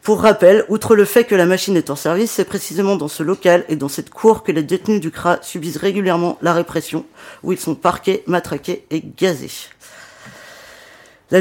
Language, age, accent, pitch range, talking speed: French, 40-59, French, 160-195 Hz, 195 wpm